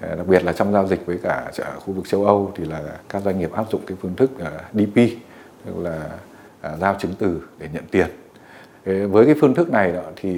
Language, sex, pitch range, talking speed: Vietnamese, male, 90-110 Hz, 220 wpm